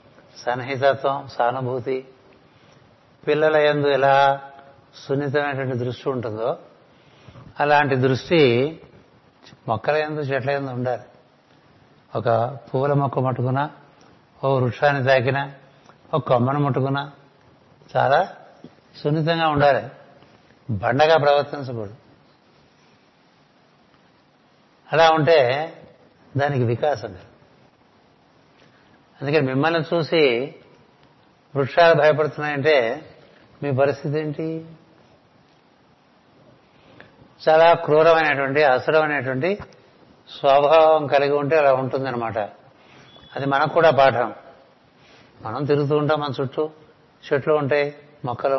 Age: 60-79